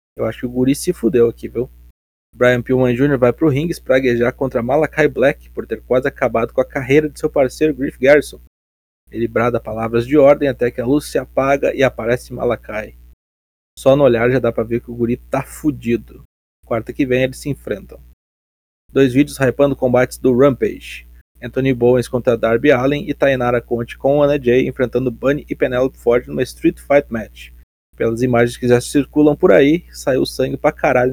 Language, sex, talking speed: Portuguese, male, 195 wpm